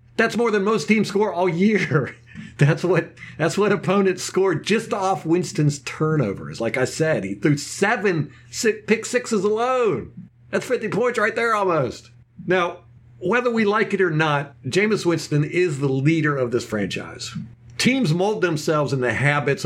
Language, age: English, 50-69